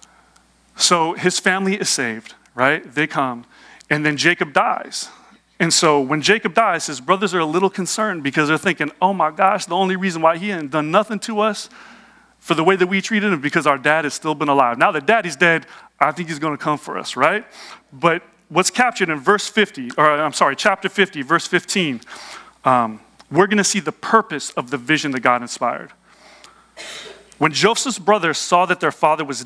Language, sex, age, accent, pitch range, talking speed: English, male, 40-59, American, 135-185 Hz, 205 wpm